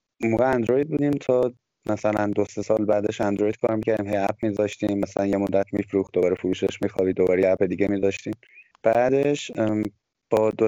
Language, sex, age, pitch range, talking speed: Persian, male, 20-39, 100-120 Hz, 165 wpm